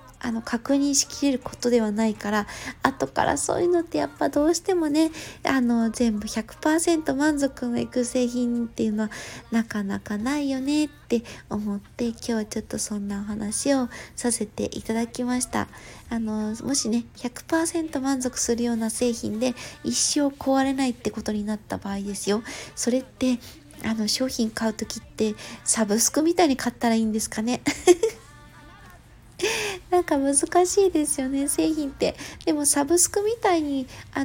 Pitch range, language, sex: 230-295 Hz, Japanese, female